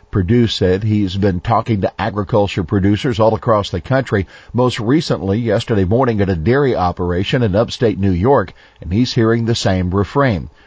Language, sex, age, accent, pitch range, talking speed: English, male, 50-69, American, 95-120 Hz, 170 wpm